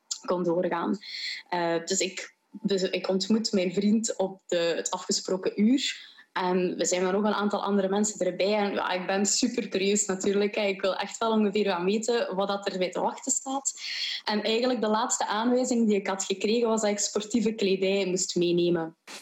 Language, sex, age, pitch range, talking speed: Dutch, female, 20-39, 185-225 Hz, 190 wpm